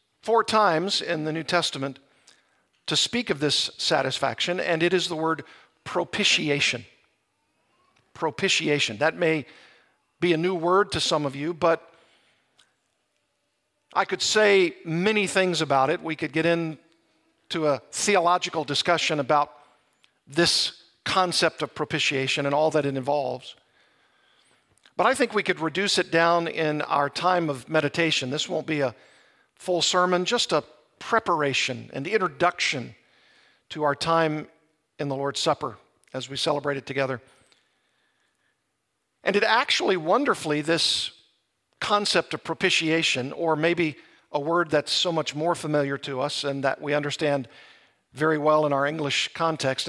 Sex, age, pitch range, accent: male, 50-69, 145-175 Hz, American